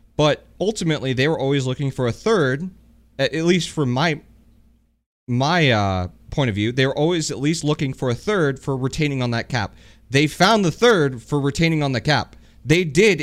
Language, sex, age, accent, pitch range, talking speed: English, male, 30-49, American, 125-165 Hz, 195 wpm